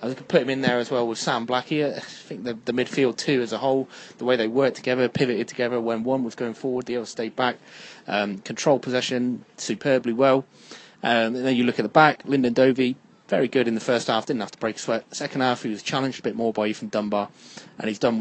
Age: 20-39